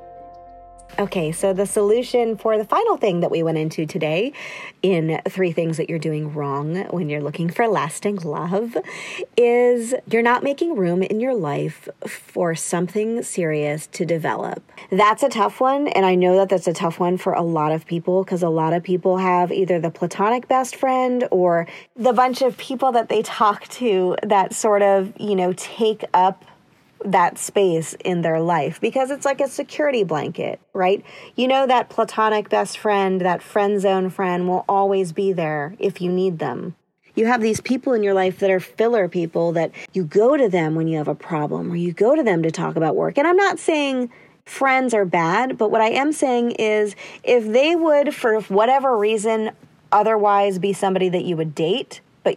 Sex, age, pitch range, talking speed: female, 30-49, 175-230 Hz, 195 wpm